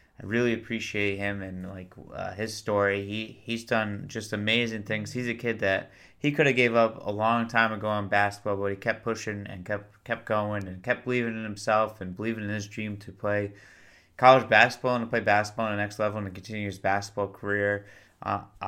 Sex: male